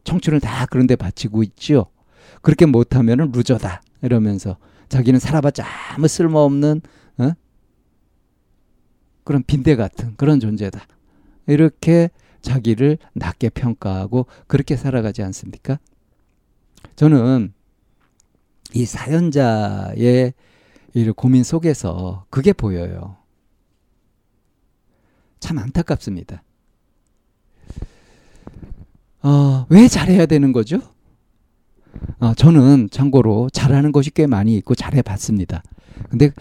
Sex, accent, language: male, native, Korean